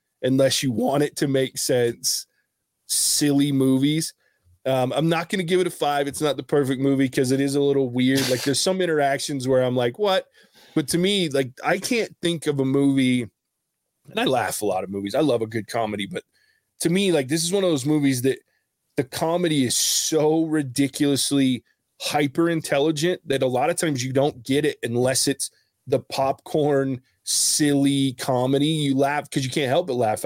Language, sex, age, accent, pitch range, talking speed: English, male, 20-39, American, 125-155 Hz, 200 wpm